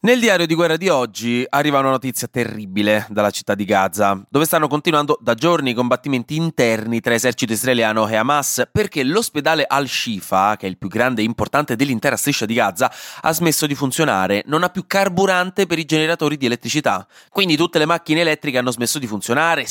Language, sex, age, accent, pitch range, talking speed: Italian, male, 20-39, native, 110-150 Hz, 190 wpm